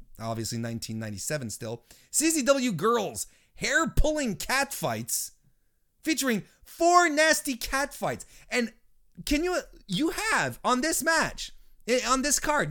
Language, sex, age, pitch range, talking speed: English, male, 30-49, 180-290 Hz, 120 wpm